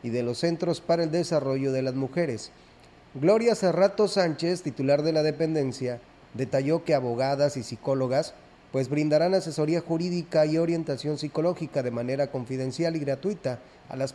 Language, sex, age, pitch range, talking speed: Spanish, male, 30-49, 130-170 Hz, 155 wpm